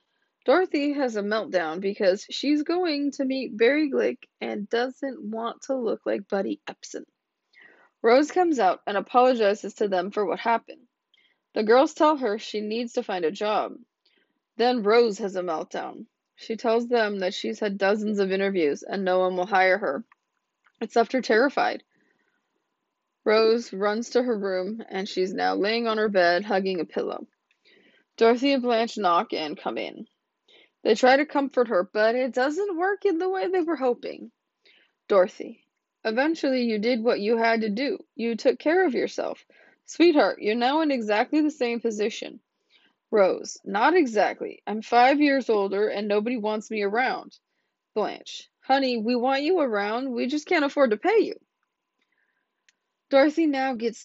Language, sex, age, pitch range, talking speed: English, female, 20-39, 210-290 Hz, 165 wpm